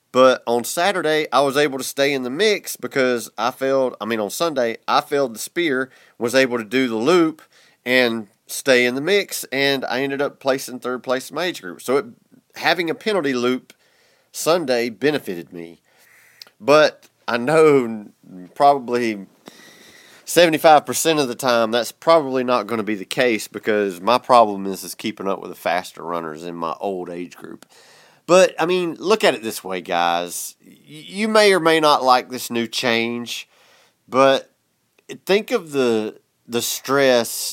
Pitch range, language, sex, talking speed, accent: 105-140 Hz, English, male, 175 wpm, American